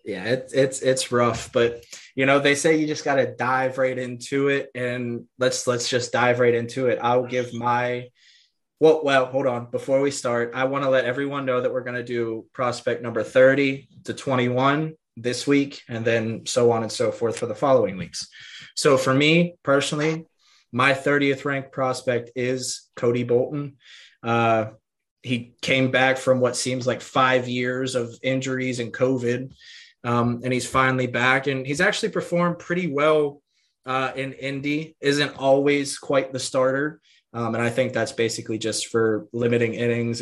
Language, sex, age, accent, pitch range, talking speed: English, male, 20-39, American, 120-145 Hz, 175 wpm